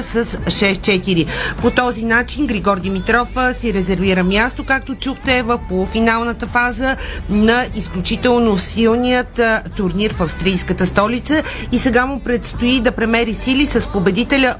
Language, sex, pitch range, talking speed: Bulgarian, female, 195-245 Hz, 125 wpm